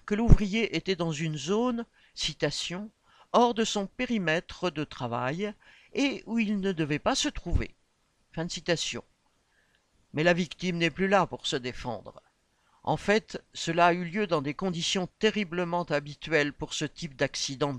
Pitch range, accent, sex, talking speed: 150-195 Hz, French, male, 170 wpm